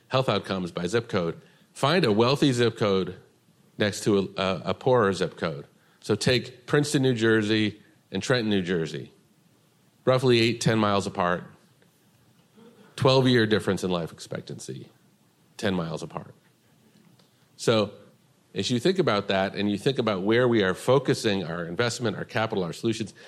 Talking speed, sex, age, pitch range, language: 150 wpm, male, 40-59, 95-120 Hz, English